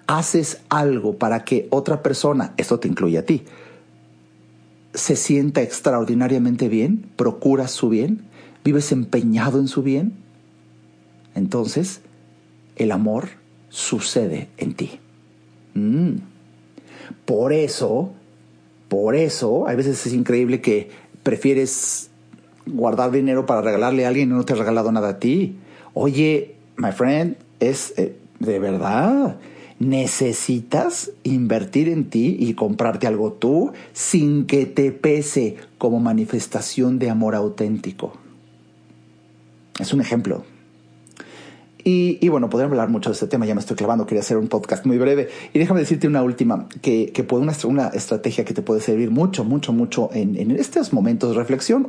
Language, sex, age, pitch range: Spanish, male, 50-69, 105-140 Hz